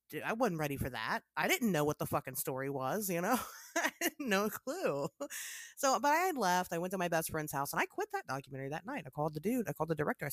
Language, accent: English, American